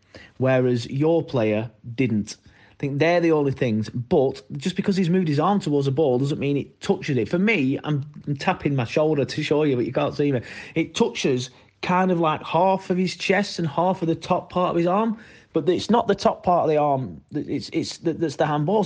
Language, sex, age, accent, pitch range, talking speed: English, male, 30-49, British, 115-175 Hz, 230 wpm